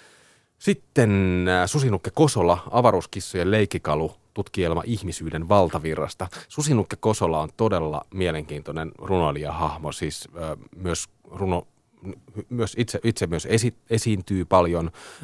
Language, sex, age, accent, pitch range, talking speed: Finnish, male, 30-49, native, 80-110 Hz, 95 wpm